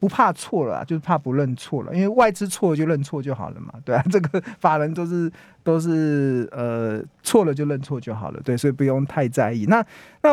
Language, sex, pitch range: Chinese, male, 125-170 Hz